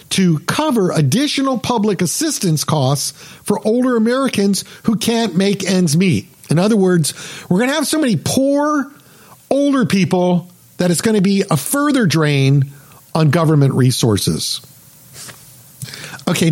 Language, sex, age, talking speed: English, male, 50-69, 140 wpm